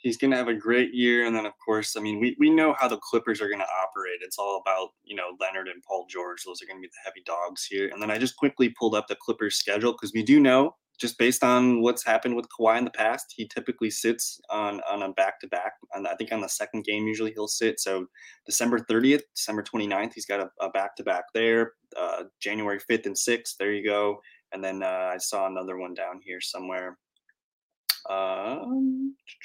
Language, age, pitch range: English, 20-39, 95-120 Hz